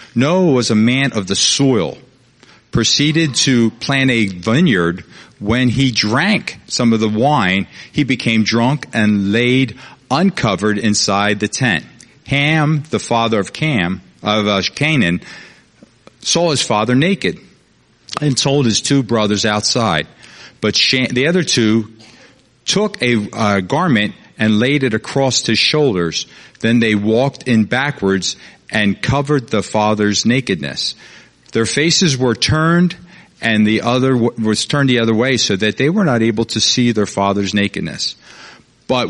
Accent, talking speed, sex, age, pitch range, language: American, 140 wpm, male, 50-69, 105-135 Hz, English